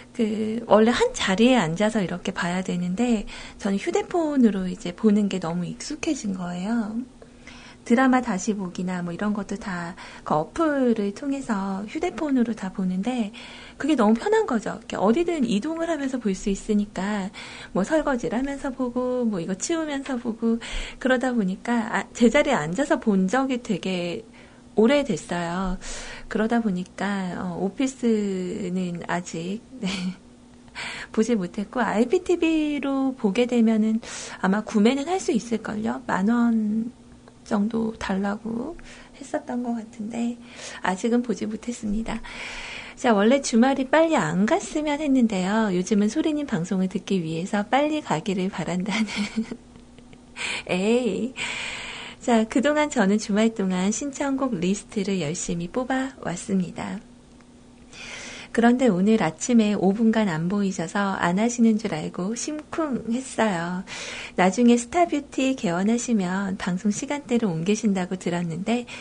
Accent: native